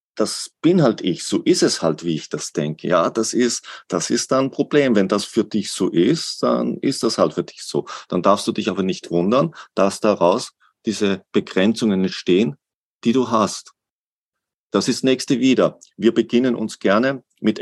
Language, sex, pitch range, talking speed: German, male, 80-110 Hz, 195 wpm